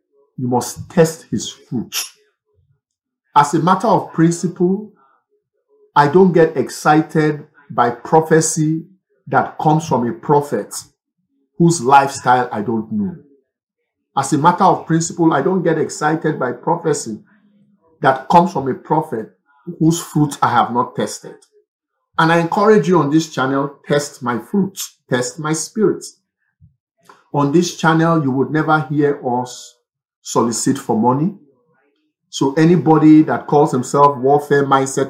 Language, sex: English, male